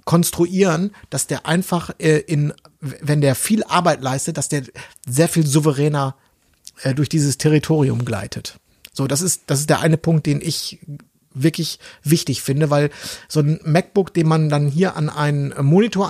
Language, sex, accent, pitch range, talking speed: German, male, German, 140-170 Hz, 170 wpm